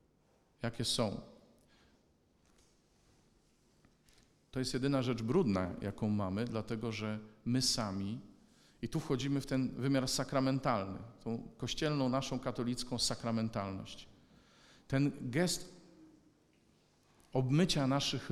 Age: 40-59